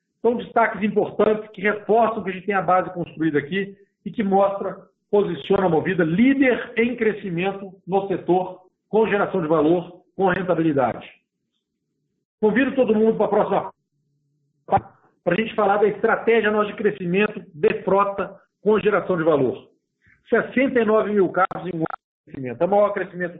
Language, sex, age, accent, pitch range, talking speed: Portuguese, male, 50-69, Brazilian, 170-210 Hz, 155 wpm